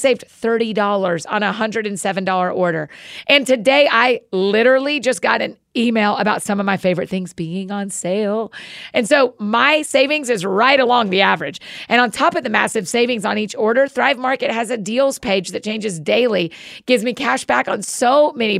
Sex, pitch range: female, 200-255 Hz